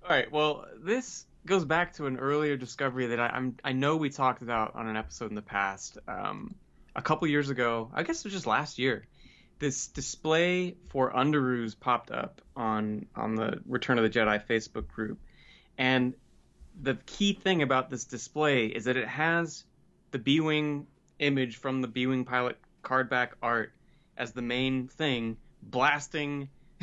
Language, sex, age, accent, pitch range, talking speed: English, male, 20-39, American, 120-150 Hz, 170 wpm